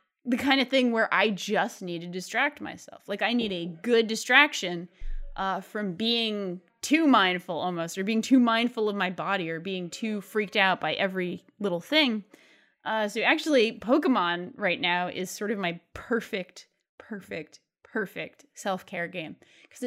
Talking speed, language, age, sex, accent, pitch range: 165 wpm, English, 20-39, female, American, 195-265 Hz